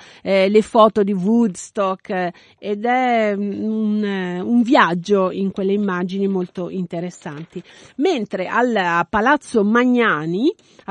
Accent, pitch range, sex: native, 195-250 Hz, female